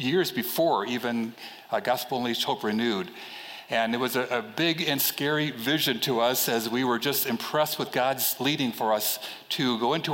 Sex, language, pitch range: male, English, 125-160 Hz